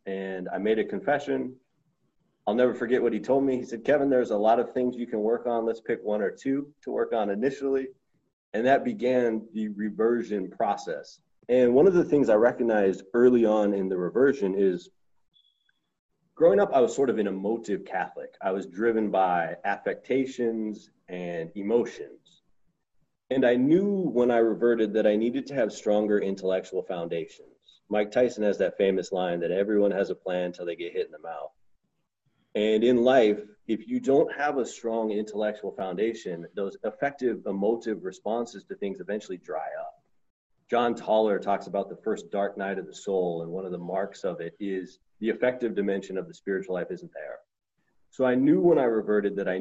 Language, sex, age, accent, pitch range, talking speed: English, male, 30-49, American, 100-125 Hz, 190 wpm